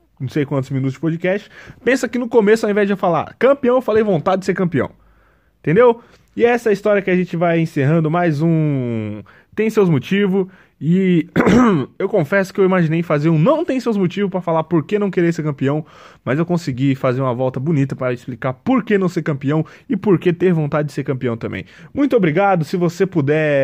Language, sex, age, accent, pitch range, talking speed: Portuguese, male, 20-39, Brazilian, 135-195 Hz, 220 wpm